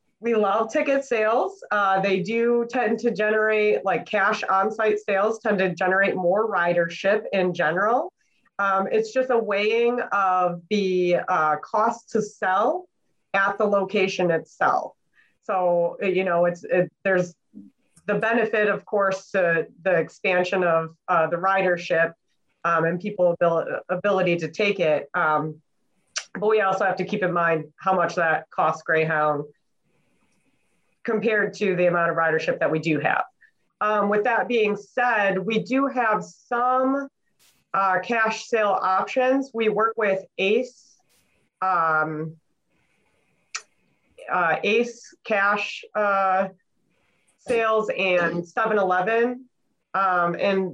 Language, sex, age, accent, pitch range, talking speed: English, female, 30-49, American, 180-220 Hz, 130 wpm